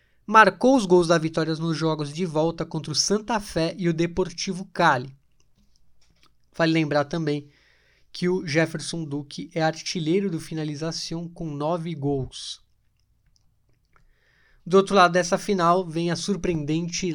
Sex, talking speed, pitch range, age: male, 135 wpm, 145-180 Hz, 20-39